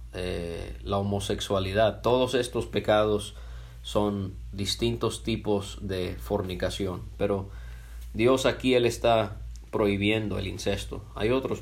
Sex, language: male, English